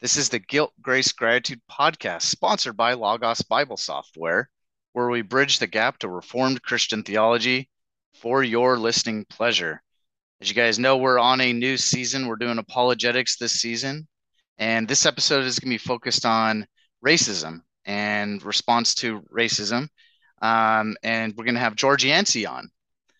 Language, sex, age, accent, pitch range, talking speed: English, male, 30-49, American, 115-135 Hz, 160 wpm